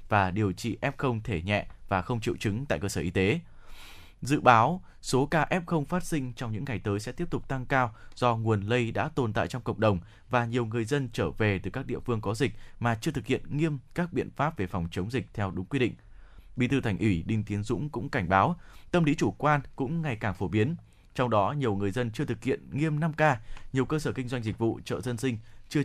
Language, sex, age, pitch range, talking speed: Vietnamese, male, 20-39, 105-140 Hz, 255 wpm